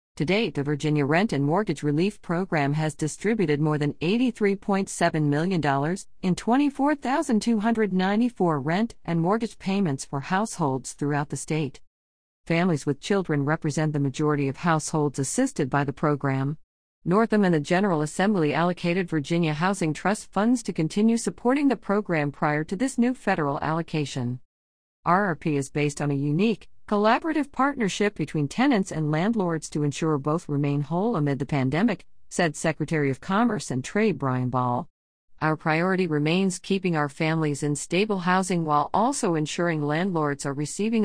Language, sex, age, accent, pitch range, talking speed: English, female, 50-69, American, 145-195 Hz, 150 wpm